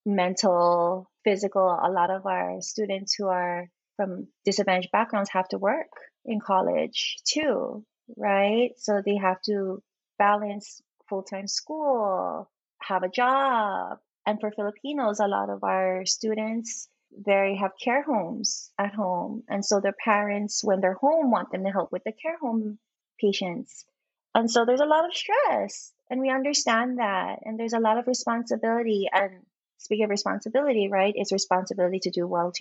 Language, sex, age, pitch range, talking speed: English, female, 30-49, 195-245 Hz, 160 wpm